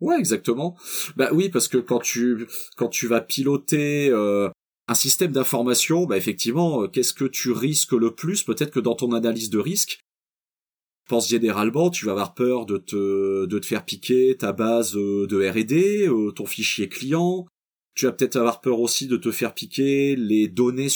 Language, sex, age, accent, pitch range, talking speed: French, male, 30-49, French, 105-135 Hz, 185 wpm